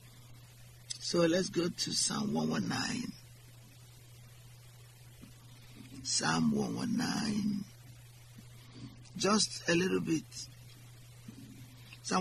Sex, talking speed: male, 65 wpm